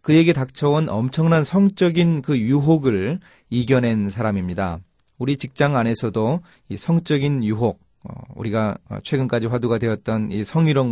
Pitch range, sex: 110-160 Hz, male